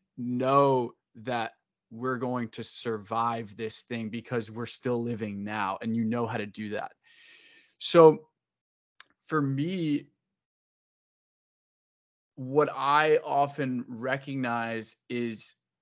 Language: English